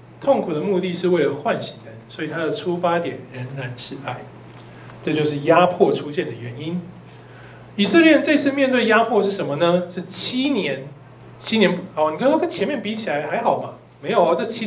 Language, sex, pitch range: Chinese, male, 155-215 Hz